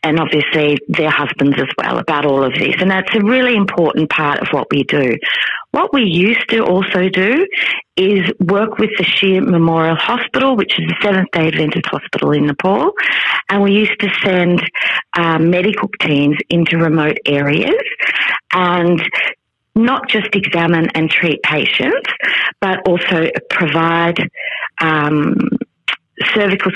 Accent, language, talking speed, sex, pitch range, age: Australian, English, 145 wpm, female, 160-200 Hz, 40-59